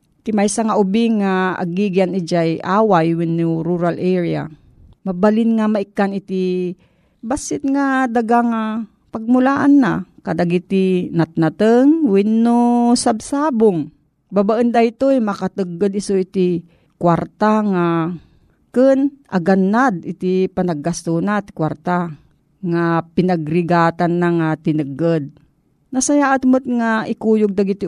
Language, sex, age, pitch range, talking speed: Filipino, female, 40-59, 170-225 Hz, 115 wpm